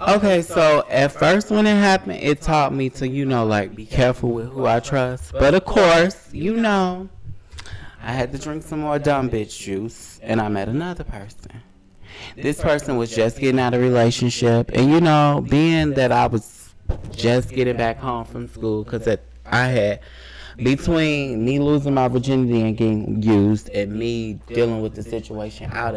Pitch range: 110-140 Hz